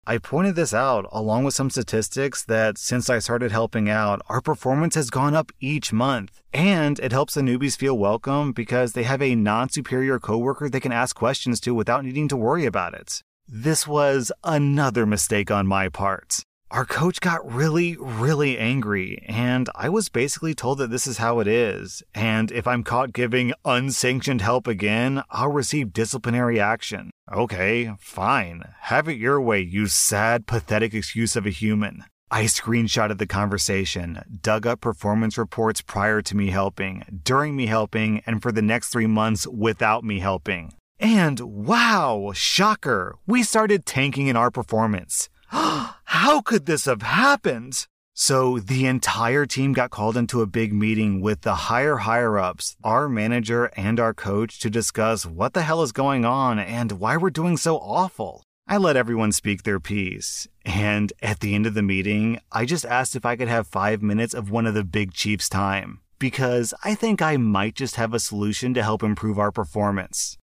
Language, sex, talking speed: English, male, 180 wpm